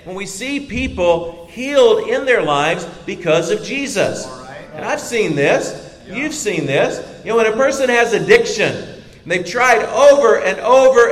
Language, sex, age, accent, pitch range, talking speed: English, male, 50-69, American, 155-245 Hz, 165 wpm